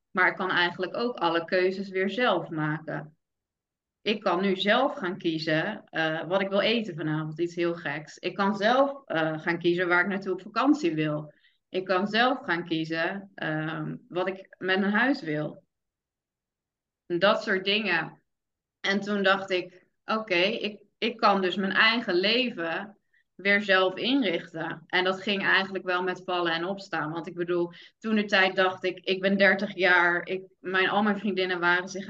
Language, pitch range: Dutch, 175-210 Hz